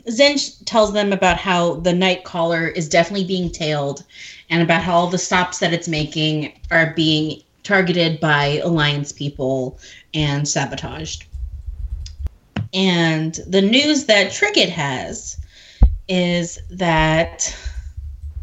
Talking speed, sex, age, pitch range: 120 wpm, female, 30-49, 150-195 Hz